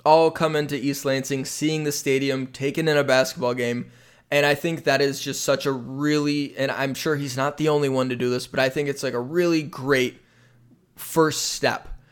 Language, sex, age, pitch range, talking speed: English, male, 20-39, 125-145 Hz, 215 wpm